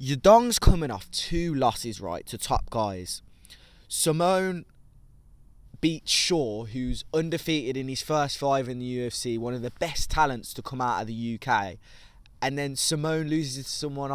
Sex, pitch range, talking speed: male, 120-145 Hz, 160 wpm